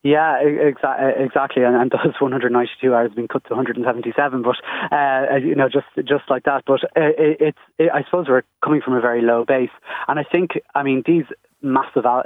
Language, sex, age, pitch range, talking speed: English, male, 20-39, 120-140 Hz, 225 wpm